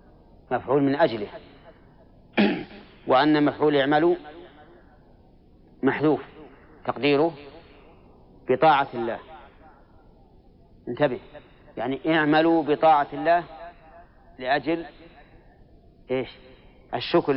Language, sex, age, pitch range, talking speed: Arabic, male, 40-59, 130-150 Hz, 60 wpm